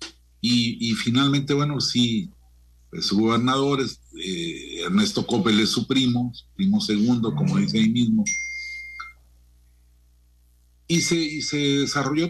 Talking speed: 110 wpm